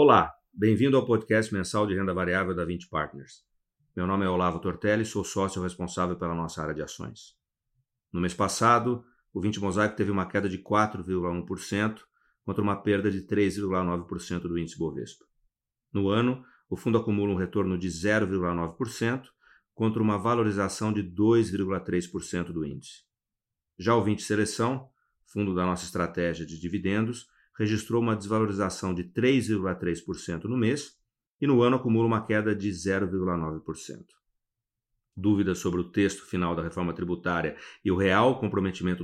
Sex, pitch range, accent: male, 90-110 Hz, Brazilian